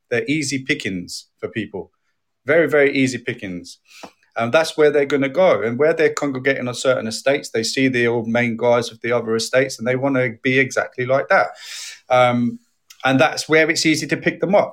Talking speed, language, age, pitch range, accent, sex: 210 wpm, English, 30-49, 125-150 Hz, British, male